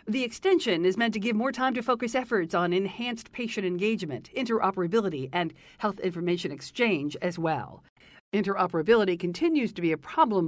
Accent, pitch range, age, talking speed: American, 175-230 Hz, 50-69, 160 wpm